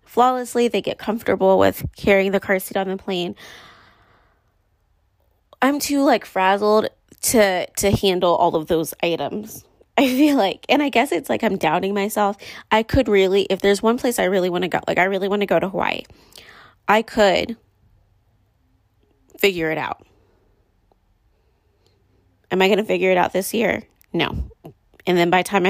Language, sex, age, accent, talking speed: English, female, 20-39, American, 175 wpm